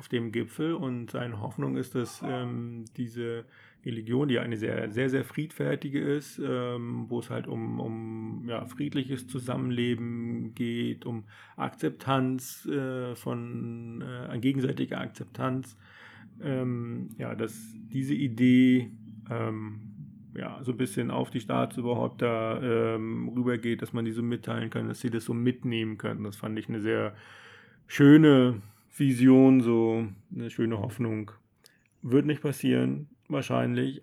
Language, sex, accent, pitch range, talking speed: German, male, German, 110-125 Hz, 145 wpm